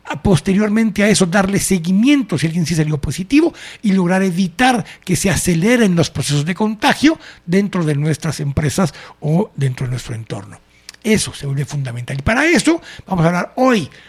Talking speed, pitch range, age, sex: 170 wpm, 160-230 Hz, 60-79, male